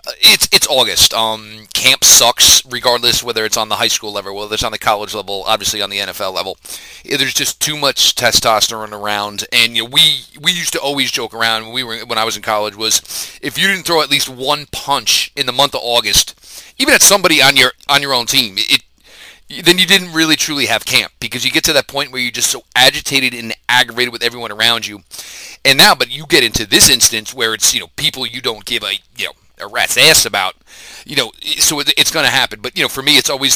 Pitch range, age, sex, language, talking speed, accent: 110-140 Hz, 30-49, male, English, 240 wpm, American